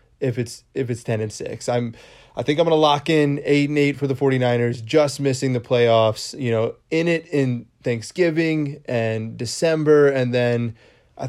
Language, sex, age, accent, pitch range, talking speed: English, male, 20-39, American, 120-150 Hz, 190 wpm